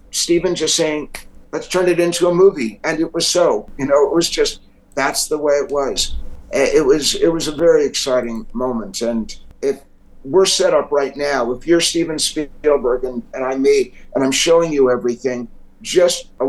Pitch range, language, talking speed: 125-165 Hz, English, 195 wpm